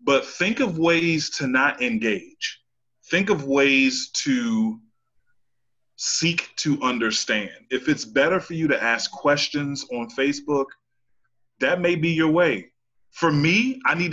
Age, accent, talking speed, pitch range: 20-39, American, 140 wpm, 120-180 Hz